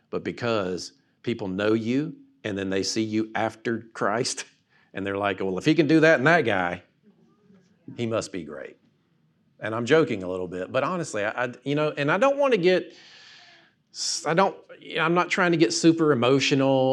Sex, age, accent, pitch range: male, 50-69, American, 110-150 Hz